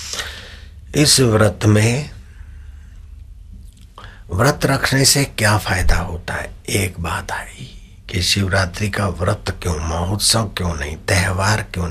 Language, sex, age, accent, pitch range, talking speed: Hindi, male, 60-79, native, 90-110 Hz, 115 wpm